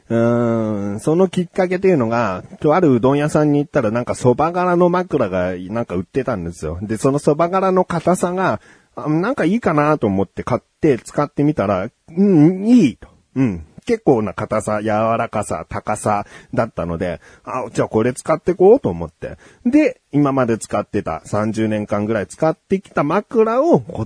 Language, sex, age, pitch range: Japanese, male, 40-59, 105-150 Hz